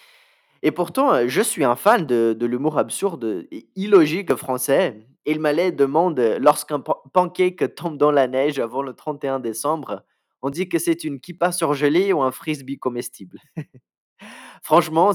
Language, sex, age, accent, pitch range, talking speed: French, male, 20-39, French, 140-195 Hz, 155 wpm